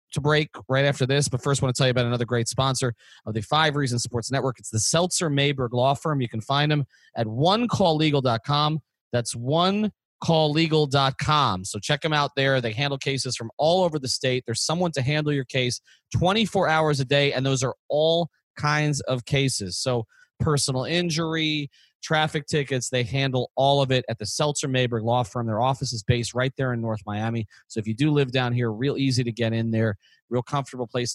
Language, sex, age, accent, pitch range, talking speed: English, male, 30-49, American, 120-150 Hz, 200 wpm